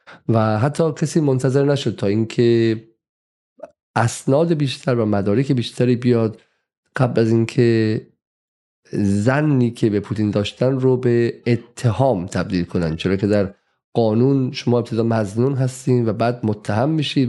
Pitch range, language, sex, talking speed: 110-130 Hz, Persian, male, 130 wpm